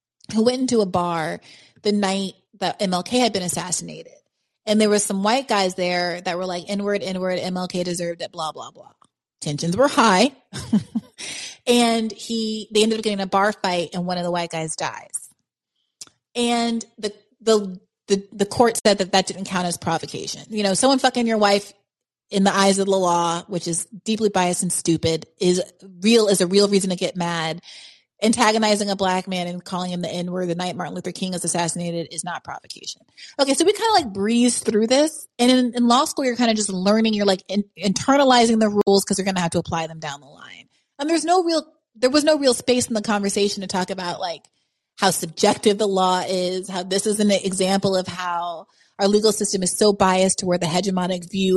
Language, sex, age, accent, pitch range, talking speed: English, female, 30-49, American, 180-220 Hz, 210 wpm